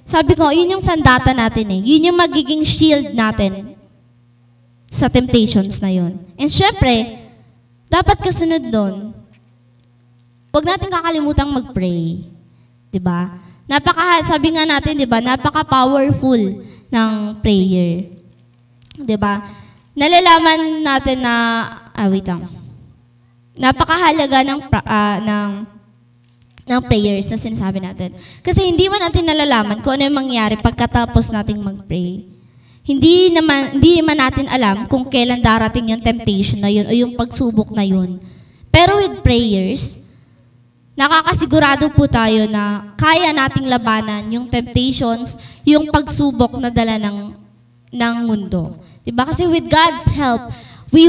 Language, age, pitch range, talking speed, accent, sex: Filipino, 20-39, 180-285 Hz, 130 wpm, American, male